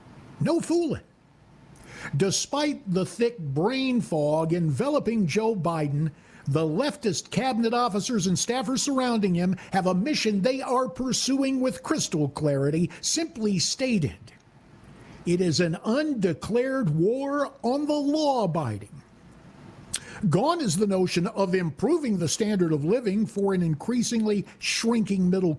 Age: 50-69